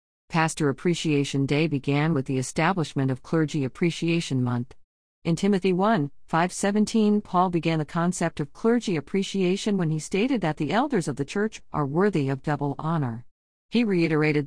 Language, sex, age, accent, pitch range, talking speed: English, female, 50-69, American, 145-185 Hz, 160 wpm